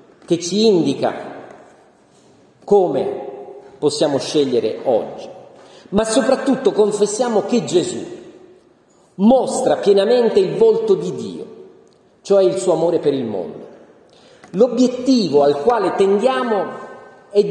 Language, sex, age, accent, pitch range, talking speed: Italian, male, 40-59, native, 185-275 Hz, 105 wpm